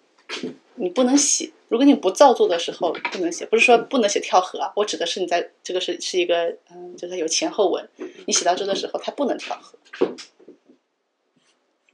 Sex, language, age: female, Chinese, 30-49